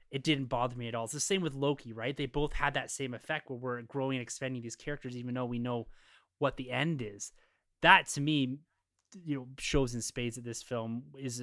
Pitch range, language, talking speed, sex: 120-150 Hz, English, 235 wpm, male